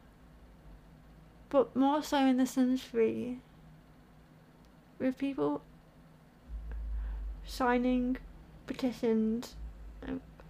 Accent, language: British, English